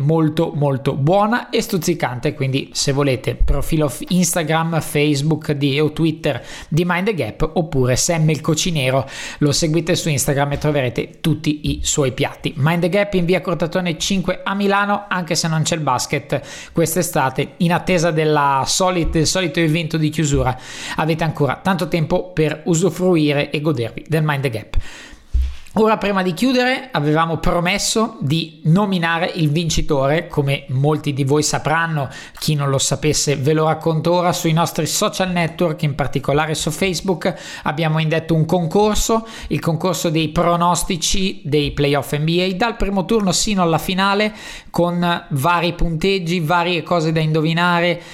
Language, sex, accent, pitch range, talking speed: Italian, male, native, 150-180 Hz, 155 wpm